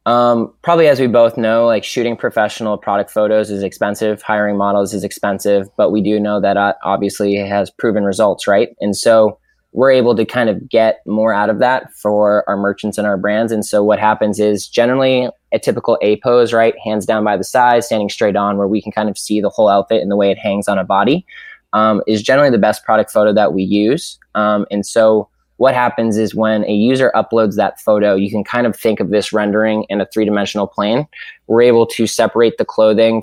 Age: 20-39